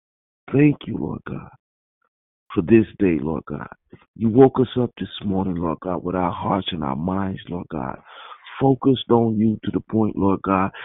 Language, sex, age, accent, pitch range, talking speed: English, male, 50-69, American, 100-140 Hz, 185 wpm